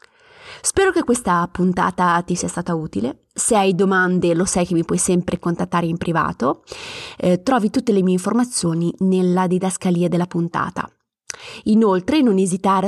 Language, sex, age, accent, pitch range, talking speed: Italian, female, 20-39, native, 175-220 Hz, 155 wpm